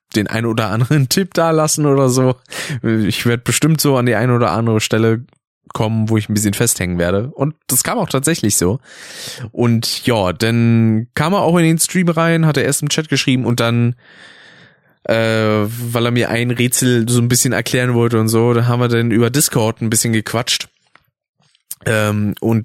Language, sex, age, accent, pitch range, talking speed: German, male, 20-39, German, 115-155 Hz, 195 wpm